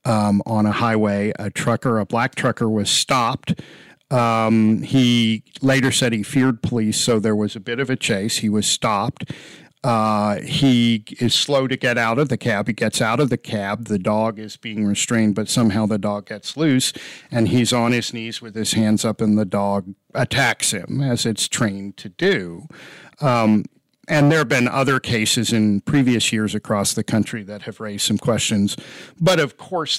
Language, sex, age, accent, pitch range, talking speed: English, male, 50-69, American, 105-130 Hz, 190 wpm